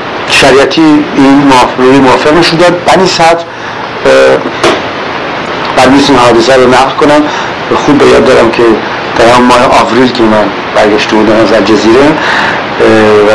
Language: Persian